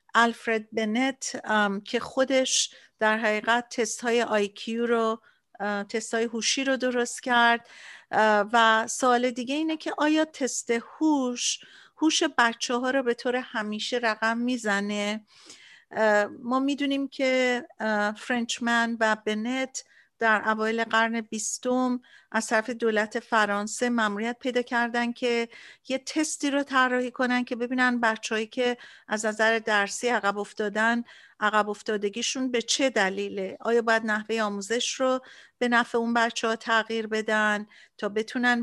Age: 50-69